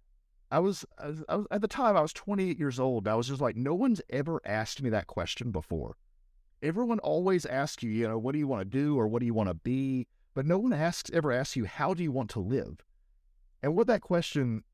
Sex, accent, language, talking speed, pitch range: male, American, English, 255 wpm, 100-140 Hz